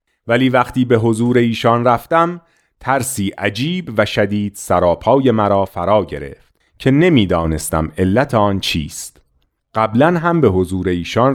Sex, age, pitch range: male, 40-59, 90-125 Hz